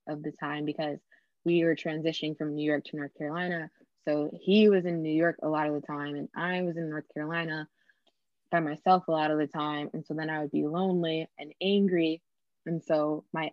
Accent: American